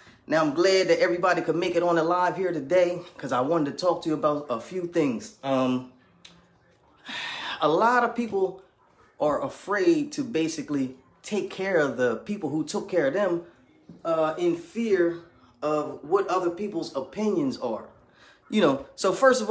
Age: 20-39